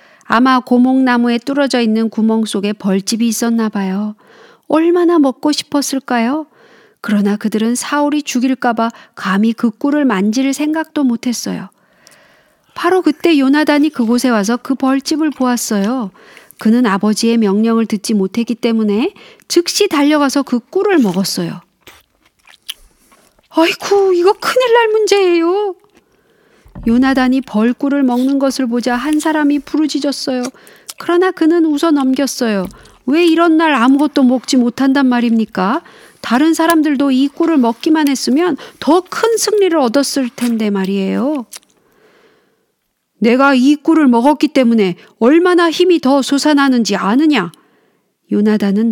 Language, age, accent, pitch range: Korean, 40-59, native, 225-305 Hz